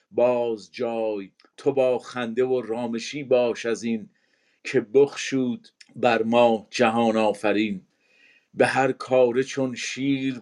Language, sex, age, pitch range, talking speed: Persian, male, 50-69, 115-135 Hz, 120 wpm